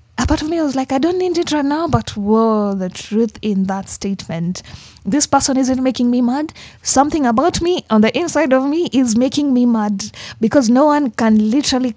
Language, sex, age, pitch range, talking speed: English, female, 20-39, 190-245 Hz, 210 wpm